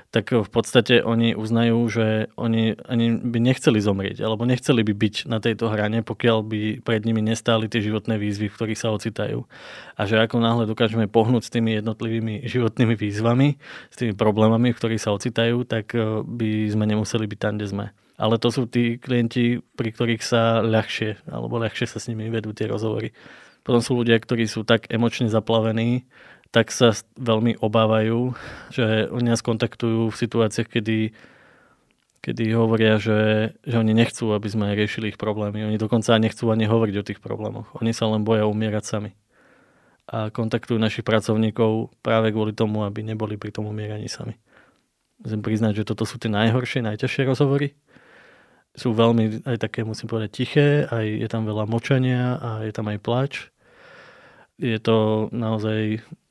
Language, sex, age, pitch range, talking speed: Slovak, male, 20-39, 110-115 Hz, 170 wpm